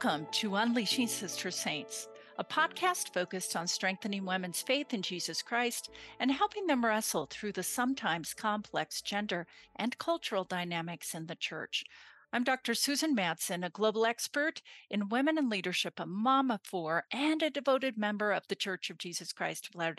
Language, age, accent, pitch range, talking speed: English, 50-69, American, 185-260 Hz, 170 wpm